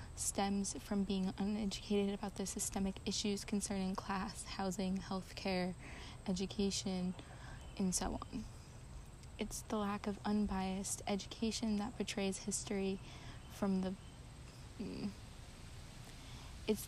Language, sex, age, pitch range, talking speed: English, female, 20-39, 190-210 Hz, 105 wpm